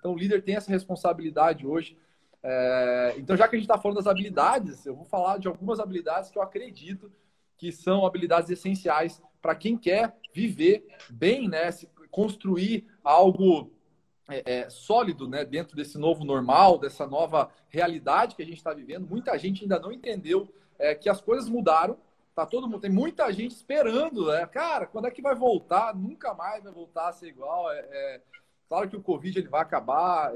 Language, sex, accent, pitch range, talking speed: Portuguese, male, Brazilian, 165-215 Hz, 170 wpm